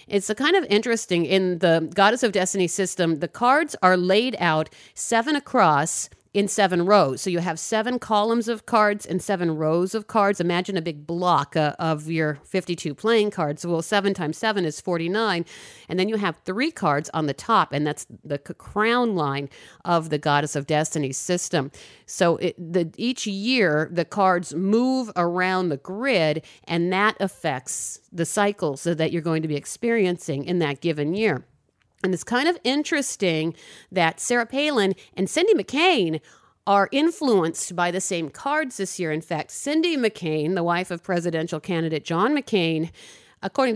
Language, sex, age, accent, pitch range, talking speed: English, female, 50-69, American, 165-215 Hz, 170 wpm